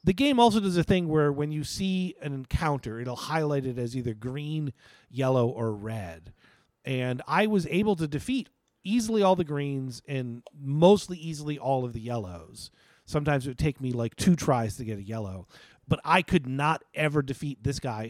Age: 40-59